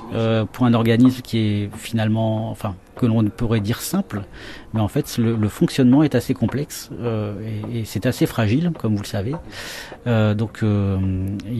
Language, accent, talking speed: French, French, 180 wpm